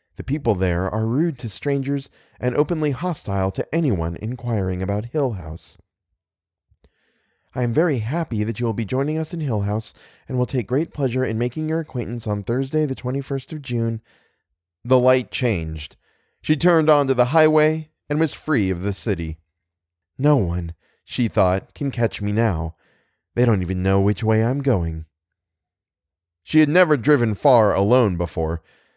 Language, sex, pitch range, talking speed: English, male, 95-130 Hz, 170 wpm